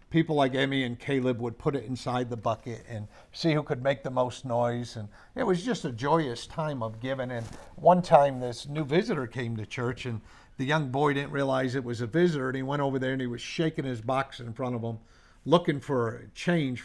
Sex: male